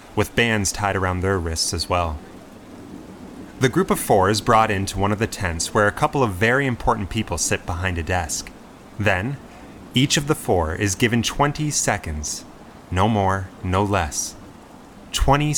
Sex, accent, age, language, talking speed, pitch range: male, American, 30-49, English, 170 wpm, 90-120 Hz